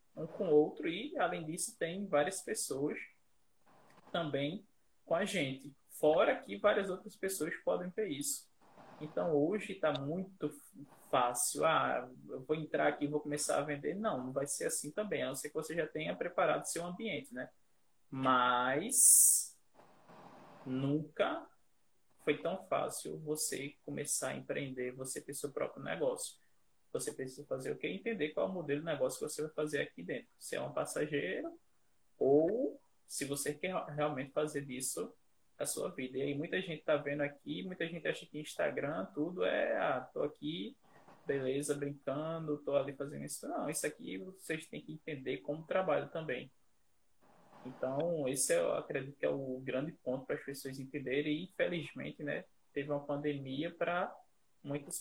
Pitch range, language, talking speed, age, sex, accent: 140-165 Hz, Portuguese, 170 wpm, 20-39, male, Brazilian